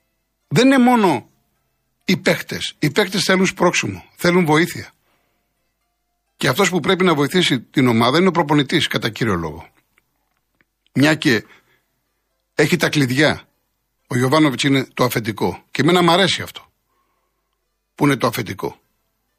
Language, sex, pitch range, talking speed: Greek, male, 115-165 Hz, 135 wpm